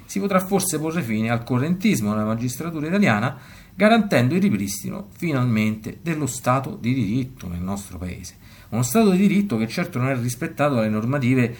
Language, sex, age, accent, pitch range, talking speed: Italian, male, 50-69, native, 105-135 Hz, 165 wpm